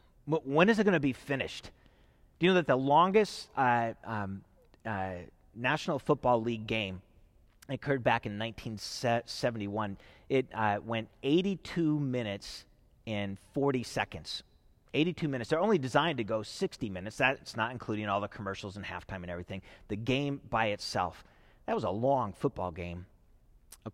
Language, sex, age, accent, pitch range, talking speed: English, male, 30-49, American, 105-145 Hz, 155 wpm